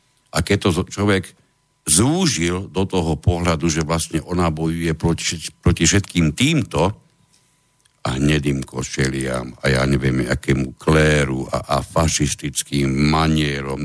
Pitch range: 75-95 Hz